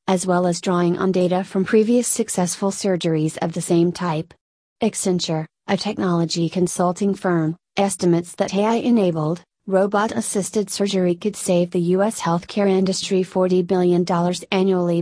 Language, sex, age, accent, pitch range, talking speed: English, female, 30-49, American, 175-200 Hz, 130 wpm